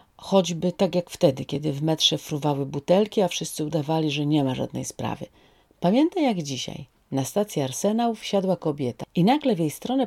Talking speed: 180 wpm